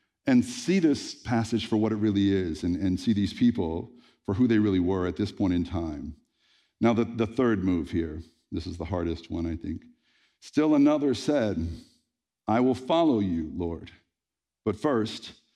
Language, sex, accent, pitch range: English, male, American, 85-120 Hz